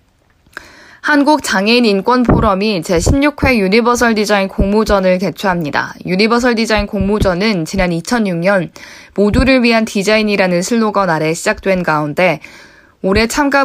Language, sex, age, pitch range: Korean, female, 20-39, 190-245 Hz